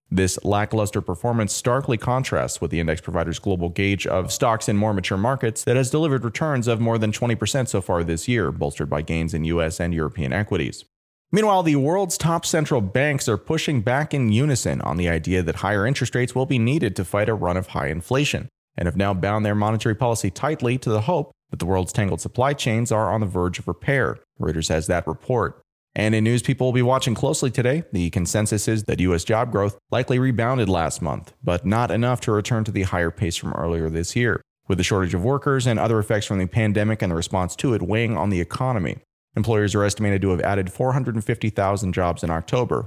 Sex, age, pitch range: male, 30-49, 95-120 Hz